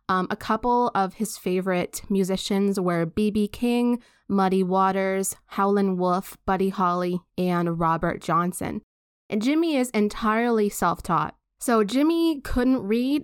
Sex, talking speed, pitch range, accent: female, 125 wpm, 180-215 Hz, American